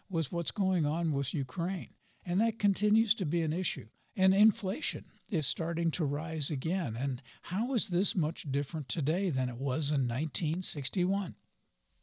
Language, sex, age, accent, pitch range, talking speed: English, male, 60-79, American, 140-195 Hz, 160 wpm